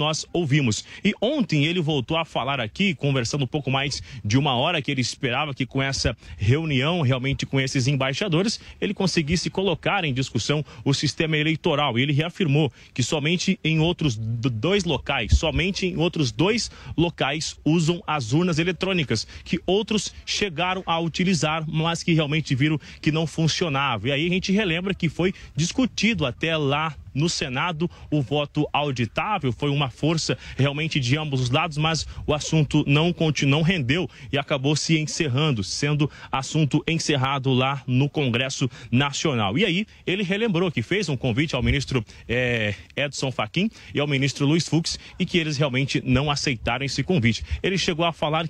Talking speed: 165 wpm